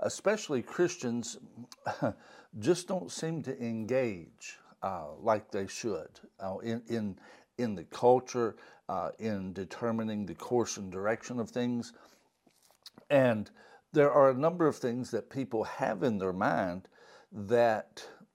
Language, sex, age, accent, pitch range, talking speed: English, male, 60-79, American, 115-145 Hz, 130 wpm